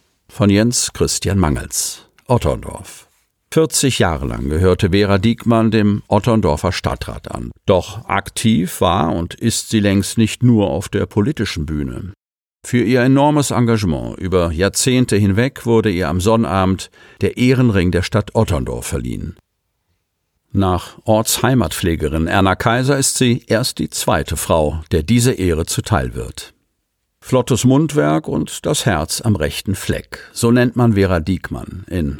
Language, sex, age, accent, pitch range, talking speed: German, male, 50-69, German, 90-115 Hz, 140 wpm